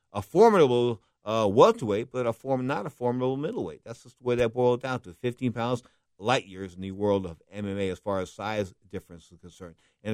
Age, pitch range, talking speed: 50-69, 105-135 Hz, 215 wpm